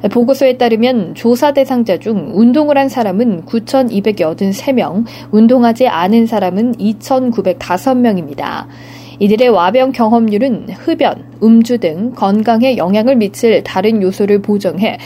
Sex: female